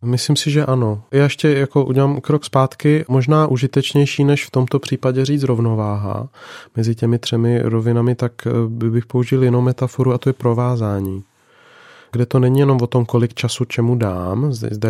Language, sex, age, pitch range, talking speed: Czech, male, 30-49, 110-130 Hz, 170 wpm